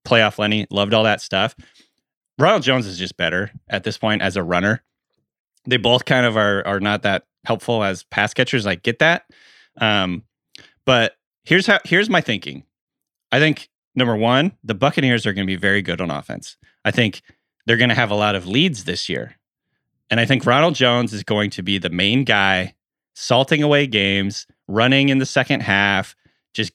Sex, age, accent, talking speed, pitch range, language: male, 30-49, American, 195 wpm, 100-130 Hz, English